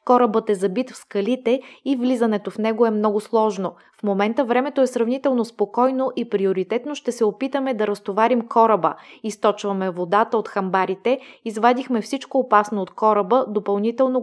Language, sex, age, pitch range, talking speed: Bulgarian, female, 20-39, 200-255 Hz, 150 wpm